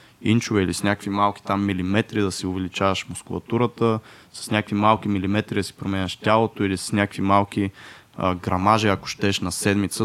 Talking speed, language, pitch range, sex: 175 wpm, Bulgarian, 100-120 Hz, male